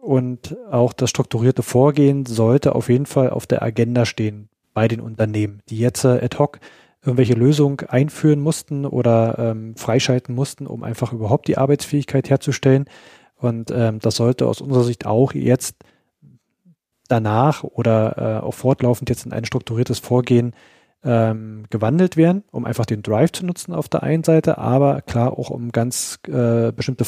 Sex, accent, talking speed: male, German, 160 wpm